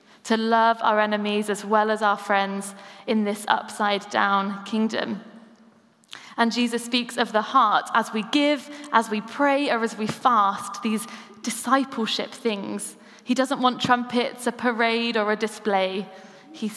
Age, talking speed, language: 20-39, 150 wpm, English